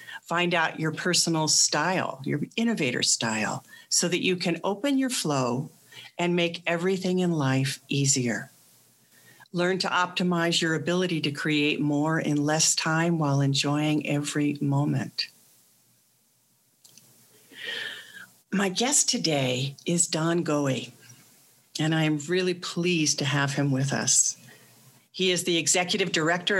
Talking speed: 130 wpm